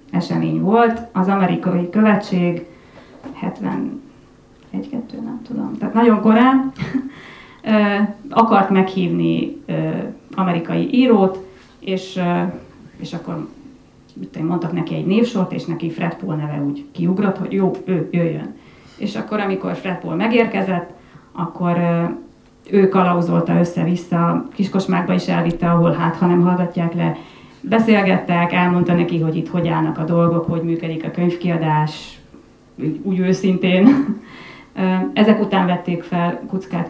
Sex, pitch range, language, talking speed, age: female, 170-205 Hz, Hungarian, 120 wpm, 30-49